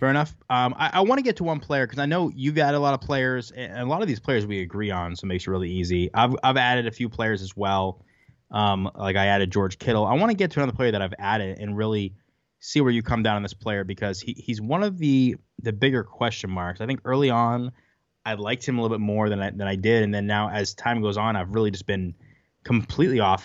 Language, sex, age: English, male, 20-39